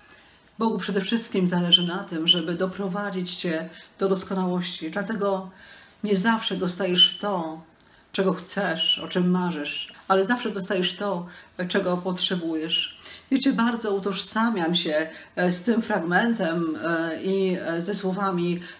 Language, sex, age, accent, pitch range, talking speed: Polish, female, 40-59, native, 180-205 Hz, 120 wpm